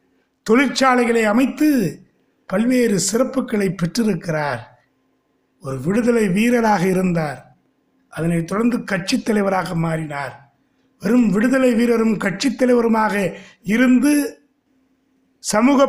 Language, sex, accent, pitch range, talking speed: Tamil, male, native, 200-255 Hz, 80 wpm